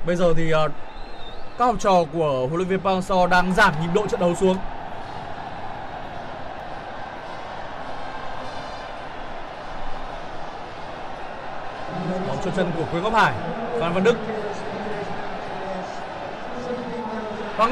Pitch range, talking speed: 210-320 Hz, 100 wpm